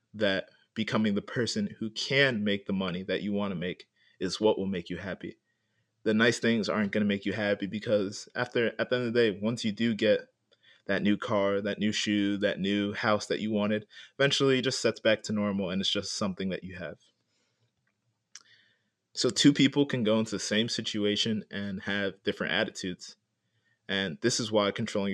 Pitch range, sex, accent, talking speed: 100-115 Hz, male, American, 205 wpm